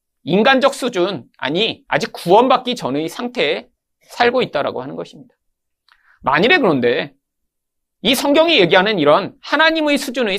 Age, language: 40-59, Korean